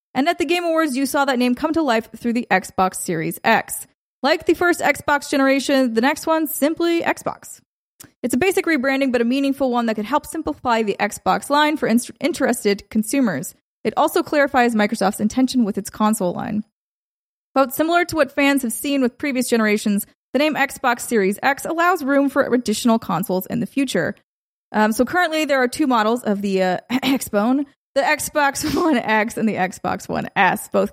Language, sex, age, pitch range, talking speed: English, female, 20-39, 215-295 Hz, 190 wpm